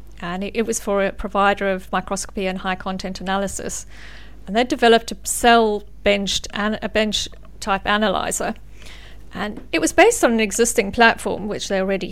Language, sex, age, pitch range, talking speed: English, female, 40-59, 195-230 Hz, 170 wpm